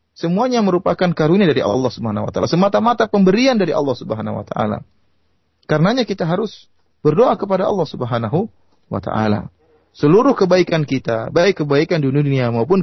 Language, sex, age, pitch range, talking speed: Indonesian, male, 30-49, 120-180 Hz, 150 wpm